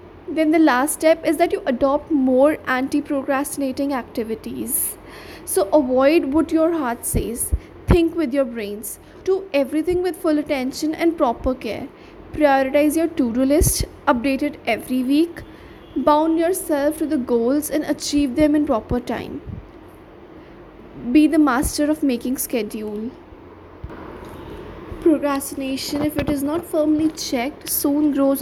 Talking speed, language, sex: 135 wpm, English, female